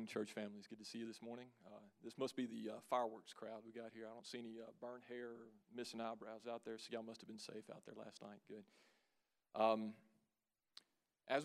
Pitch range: 110-120 Hz